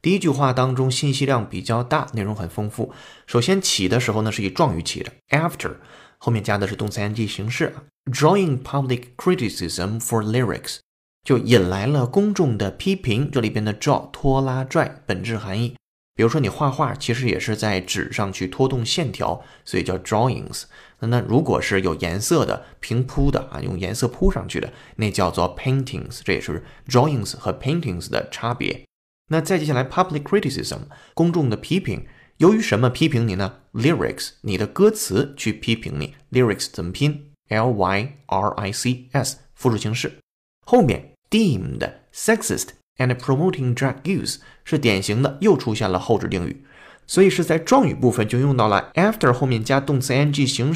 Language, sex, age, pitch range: Chinese, male, 20-39, 105-145 Hz